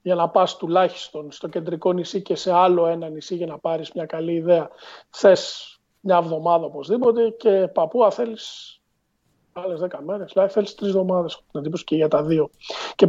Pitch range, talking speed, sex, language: 170-205 Hz, 175 wpm, male, Greek